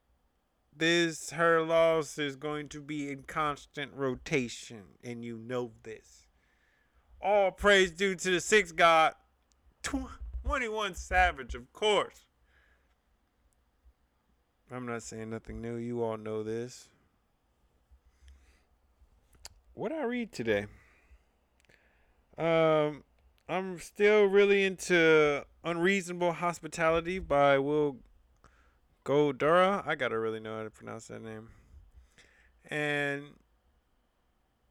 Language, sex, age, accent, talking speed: English, male, 30-49, American, 100 wpm